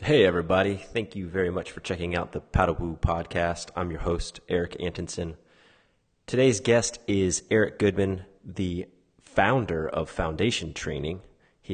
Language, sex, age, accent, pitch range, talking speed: English, male, 30-49, American, 85-95 Hz, 150 wpm